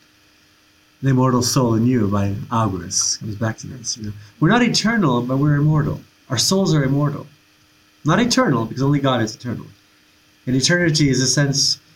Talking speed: 175 wpm